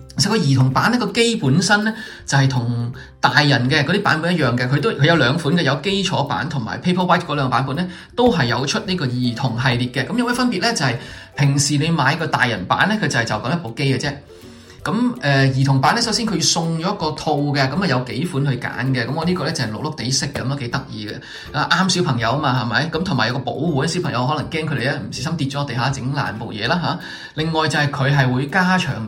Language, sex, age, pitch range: Chinese, male, 20-39, 130-175 Hz